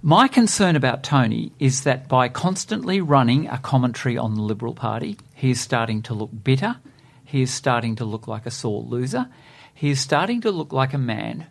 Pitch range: 125-150 Hz